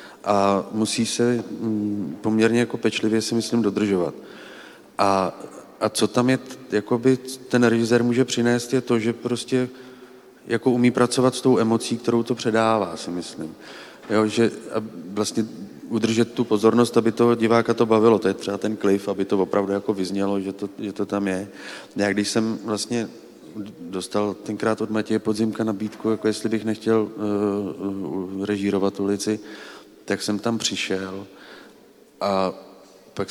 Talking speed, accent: 155 wpm, native